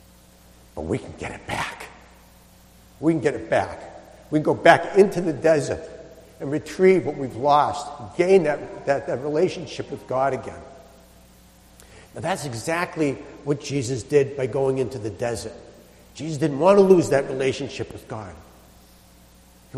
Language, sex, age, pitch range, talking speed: English, male, 60-79, 110-180 Hz, 160 wpm